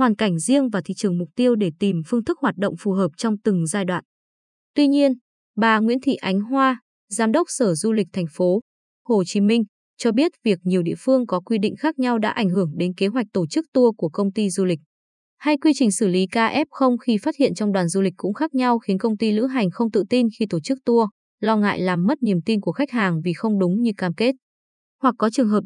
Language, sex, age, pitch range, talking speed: Vietnamese, female, 20-39, 190-245 Hz, 255 wpm